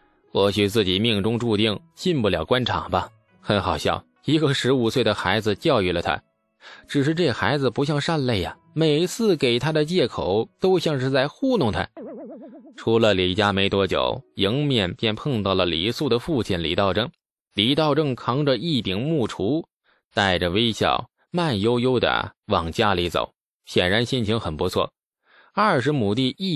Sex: male